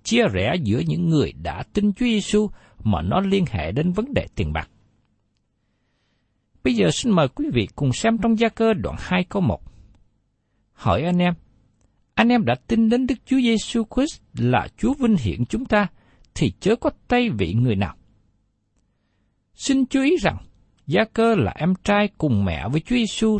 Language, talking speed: Vietnamese, 180 wpm